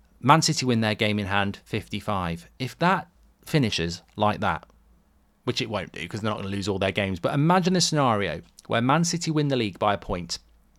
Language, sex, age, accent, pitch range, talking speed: English, male, 30-49, British, 100-130 Hz, 215 wpm